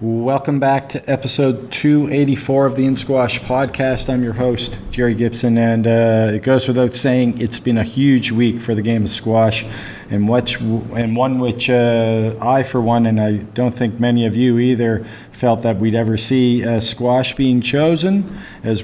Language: English